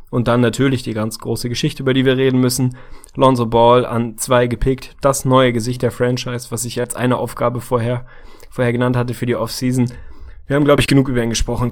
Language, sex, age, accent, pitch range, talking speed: German, male, 20-39, German, 120-135 Hz, 215 wpm